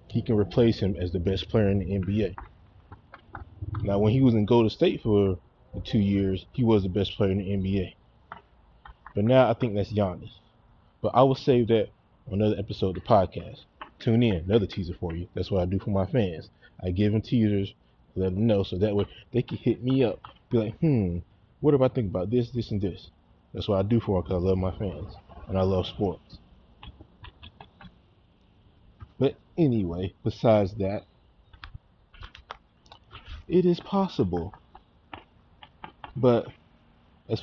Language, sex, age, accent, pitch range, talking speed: English, male, 20-39, American, 95-115 Hz, 175 wpm